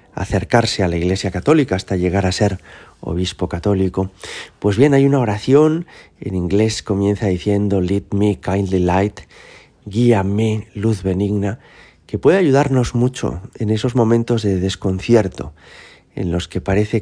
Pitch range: 95-115 Hz